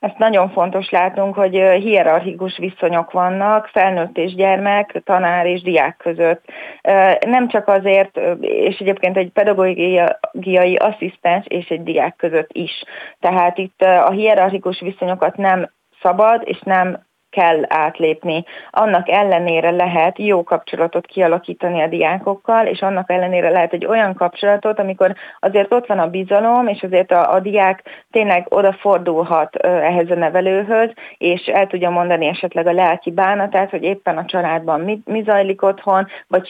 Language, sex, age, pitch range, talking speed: Hungarian, female, 30-49, 170-200 Hz, 145 wpm